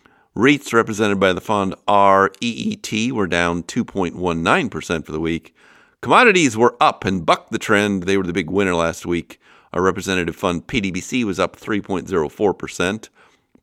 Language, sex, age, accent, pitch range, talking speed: English, male, 50-69, American, 85-100 Hz, 145 wpm